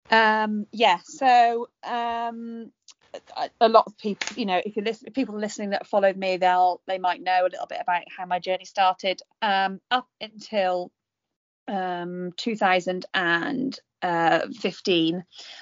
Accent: British